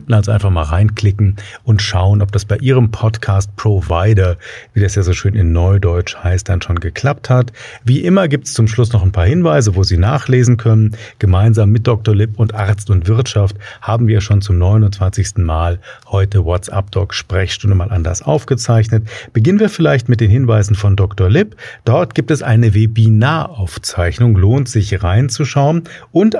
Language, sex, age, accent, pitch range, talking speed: German, male, 40-59, German, 100-125 Hz, 170 wpm